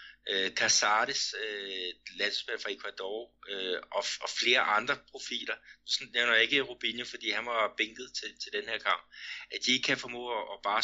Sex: male